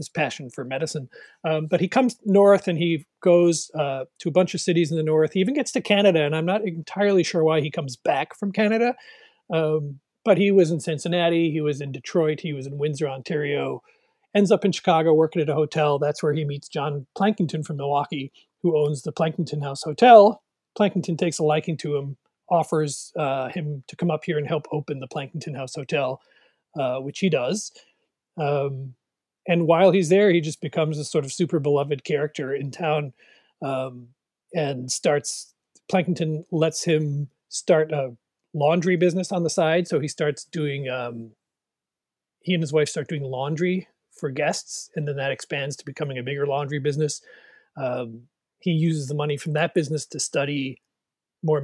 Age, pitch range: 40-59, 145-175 Hz